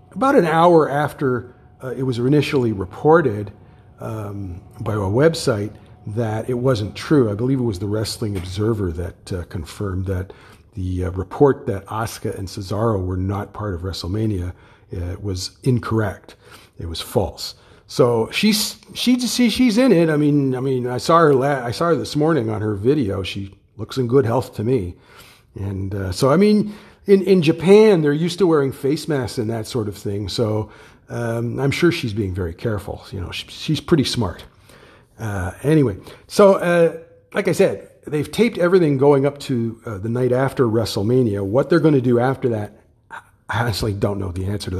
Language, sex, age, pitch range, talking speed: English, male, 50-69, 105-155 Hz, 185 wpm